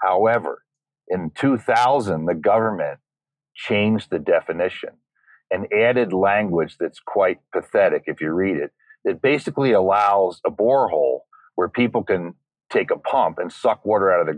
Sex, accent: male, American